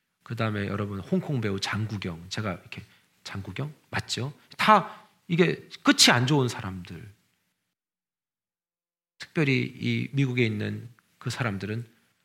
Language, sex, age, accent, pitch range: Korean, male, 40-59, native, 110-175 Hz